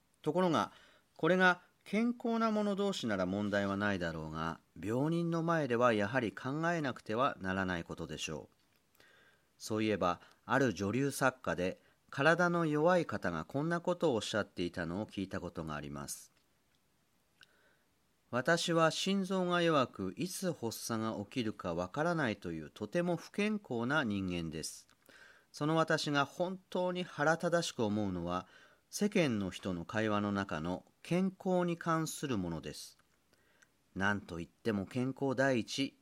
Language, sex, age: Japanese, male, 40-59